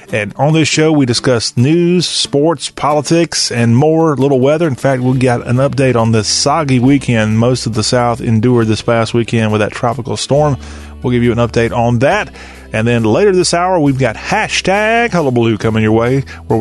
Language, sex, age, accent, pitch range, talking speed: English, male, 30-49, American, 115-155 Hz, 200 wpm